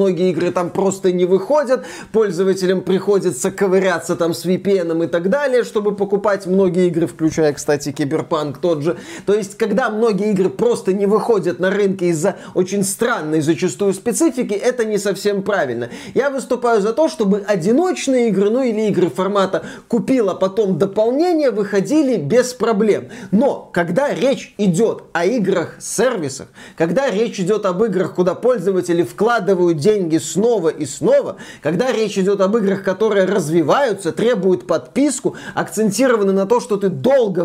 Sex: male